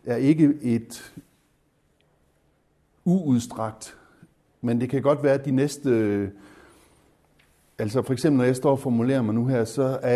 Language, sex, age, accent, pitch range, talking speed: Danish, male, 60-79, native, 110-140 Hz, 140 wpm